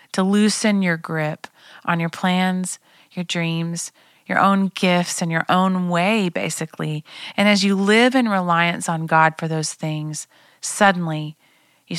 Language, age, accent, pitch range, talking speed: English, 30-49, American, 160-195 Hz, 150 wpm